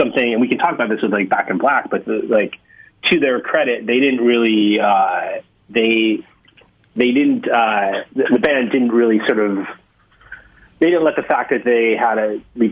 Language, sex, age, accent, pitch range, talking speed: English, male, 30-49, American, 95-115 Hz, 205 wpm